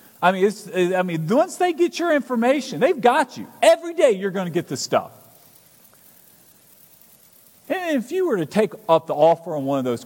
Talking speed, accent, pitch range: 205 wpm, American, 135-210 Hz